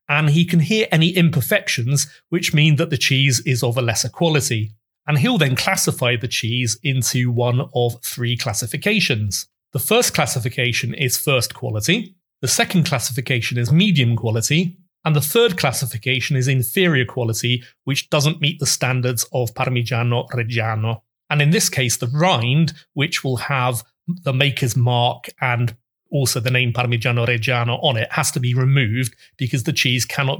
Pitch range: 120-155 Hz